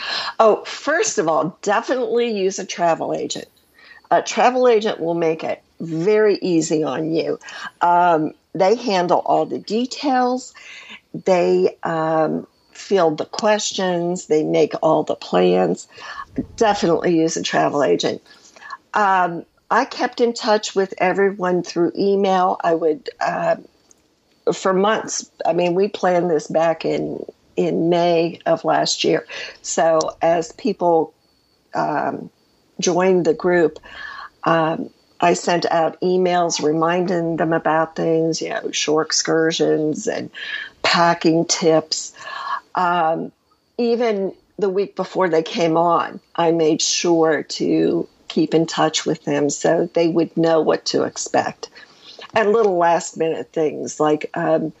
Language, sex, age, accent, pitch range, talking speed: English, female, 50-69, American, 160-195 Hz, 130 wpm